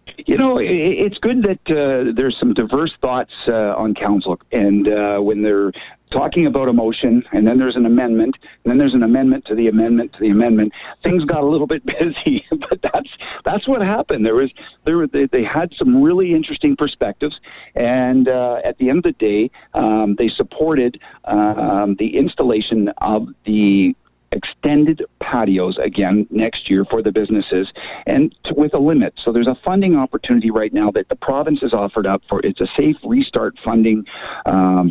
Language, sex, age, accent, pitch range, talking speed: English, male, 50-69, American, 105-160 Hz, 185 wpm